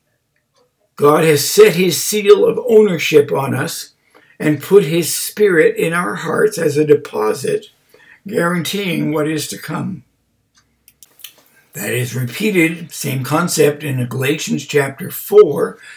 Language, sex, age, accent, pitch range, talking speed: English, male, 60-79, American, 130-170 Hz, 125 wpm